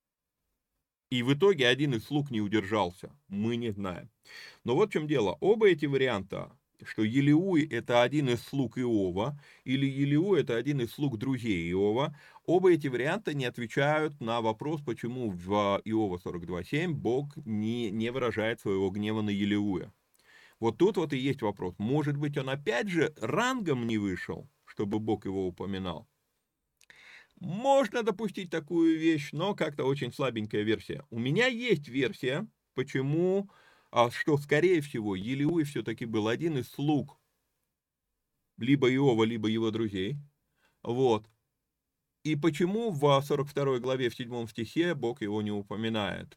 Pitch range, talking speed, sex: 110-150 Hz, 150 wpm, male